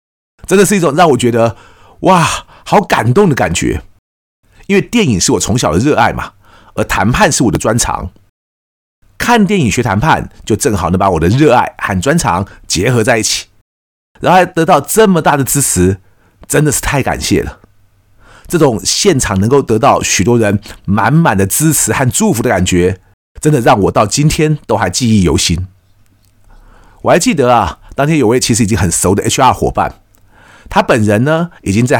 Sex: male